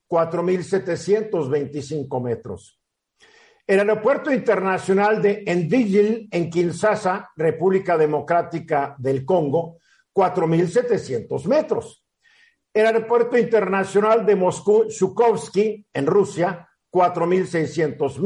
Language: Spanish